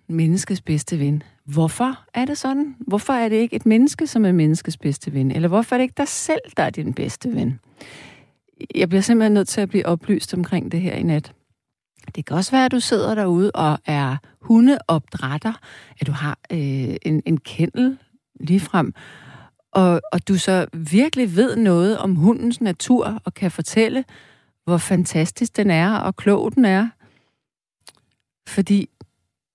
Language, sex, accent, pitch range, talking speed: Danish, female, native, 165-230 Hz, 170 wpm